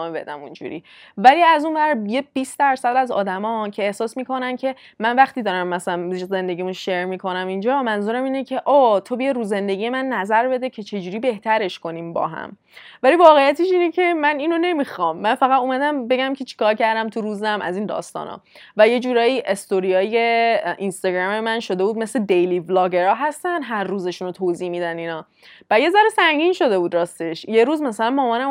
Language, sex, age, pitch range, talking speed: Persian, female, 20-39, 195-265 Hz, 185 wpm